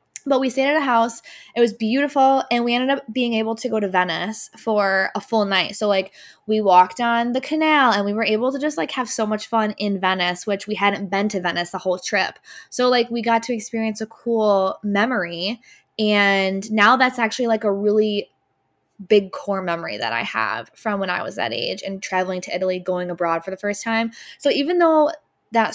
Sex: female